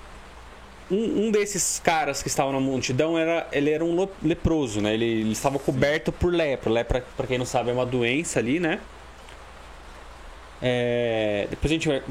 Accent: Brazilian